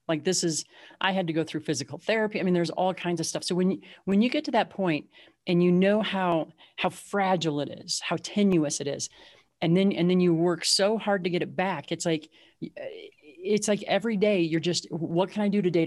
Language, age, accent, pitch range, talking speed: English, 40-59, American, 155-200 Hz, 240 wpm